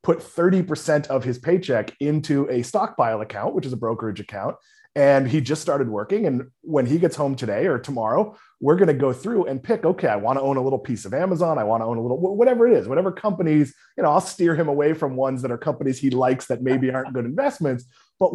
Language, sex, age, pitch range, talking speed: English, male, 30-49, 130-170 Hz, 240 wpm